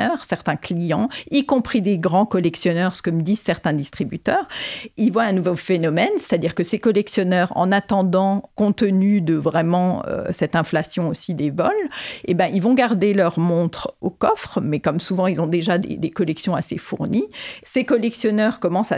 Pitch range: 175-215 Hz